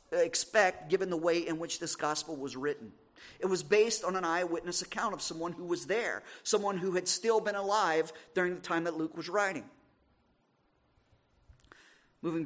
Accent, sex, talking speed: American, male, 175 wpm